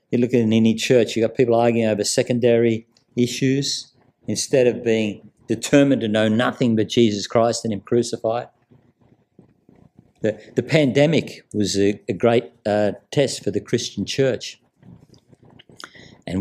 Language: English